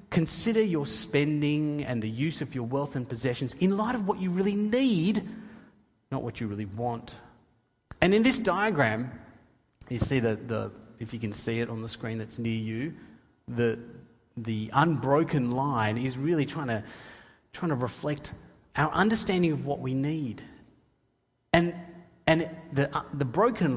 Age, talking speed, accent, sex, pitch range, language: 30-49, 160 wpm, Australian, male, 125-185 Hz, English